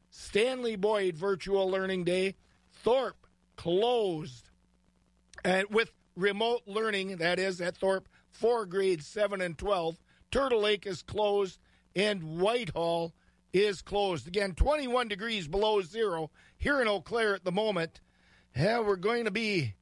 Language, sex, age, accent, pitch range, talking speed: English, male, 50-69, American, 170-220 Hz, 135 wpm